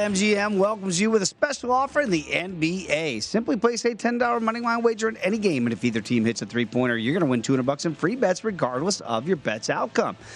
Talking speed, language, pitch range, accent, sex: 230 wpm, English, 115-170 Hz, American, male